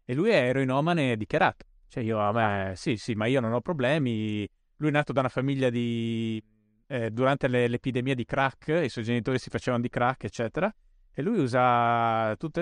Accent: native